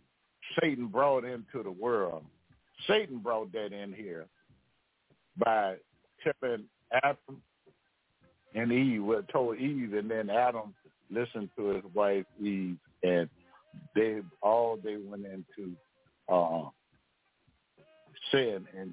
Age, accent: 60-79, American